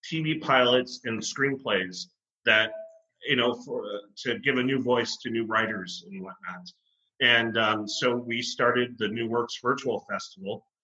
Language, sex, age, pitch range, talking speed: English, male, 30-49, 100-125 Hz, 160 wpm